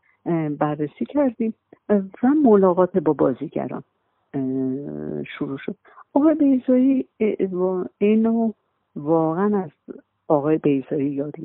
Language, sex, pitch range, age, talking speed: Persian, female, 150-195 Hz, 50-69, 85 wpm